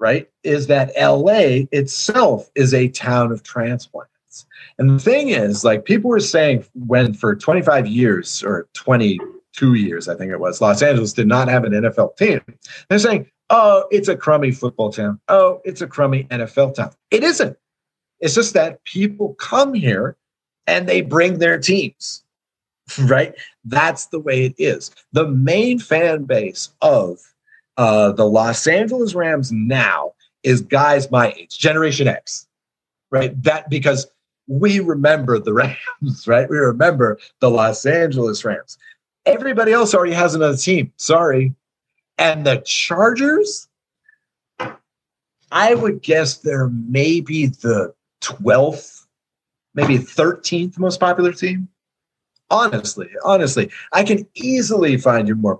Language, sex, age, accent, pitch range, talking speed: English, male, 40-59, American, 125-190 Hz, 140 wpm